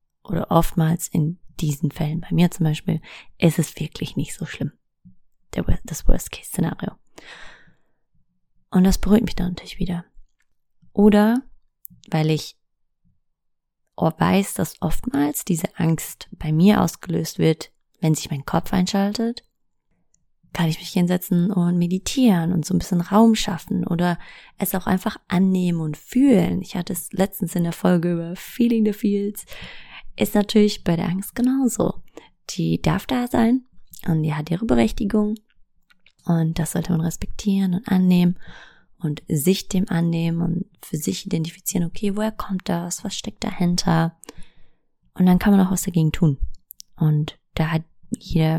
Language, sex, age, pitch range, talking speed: English, female, 20-39, 165-200 Hz, 150 wpm